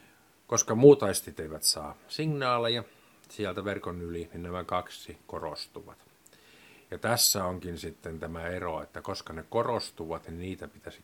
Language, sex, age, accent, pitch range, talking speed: Finnish, male, 50-69, native, 80-105 Hz, 135 wpm